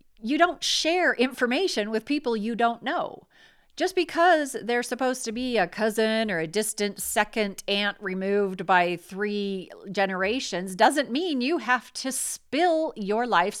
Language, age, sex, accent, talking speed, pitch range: English, 40-59, female, American, 150 wpm, 185-250 Hz